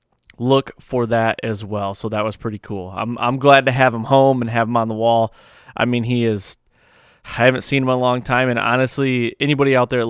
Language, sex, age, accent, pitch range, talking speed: English, male, 20-39, American, 110-130 Hz, 245 wpm